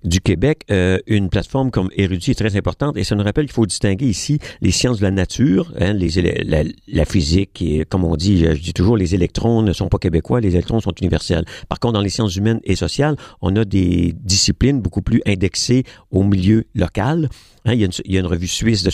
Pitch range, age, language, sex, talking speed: 90-115 Hz, 50-69, French, male, 240 wpm